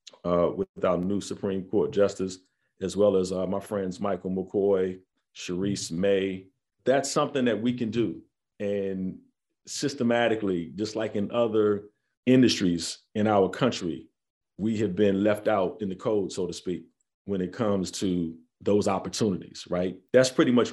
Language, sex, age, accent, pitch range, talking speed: English, male, 40-59, American, 100-120 Hz, 155 wpm